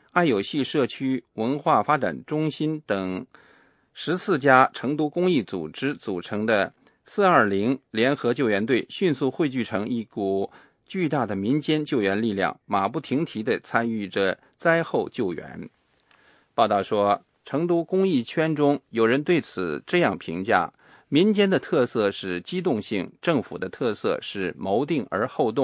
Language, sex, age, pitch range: English, male, 50-69, 115-165 Hz